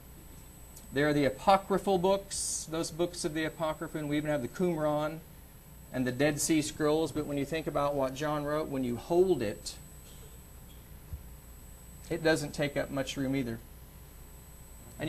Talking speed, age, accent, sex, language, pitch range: 165 wpm, 40-59, American, male, English, 115-165 Hz